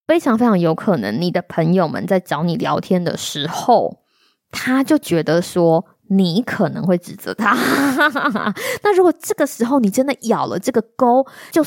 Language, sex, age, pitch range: Chinese, female, 20-39, 180-245 Hz